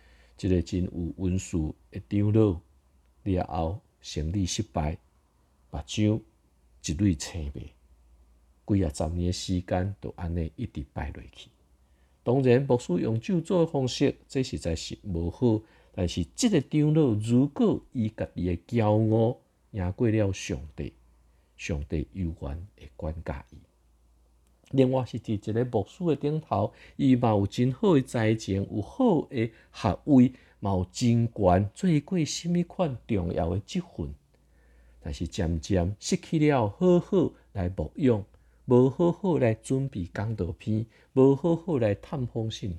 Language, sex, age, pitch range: Chinese, male, 50-69, 80-120 Hz